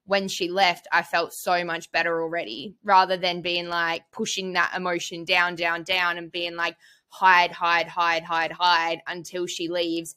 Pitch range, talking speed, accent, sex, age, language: 165-185 Hz, 175 wpm, Australian, female, 10-29, English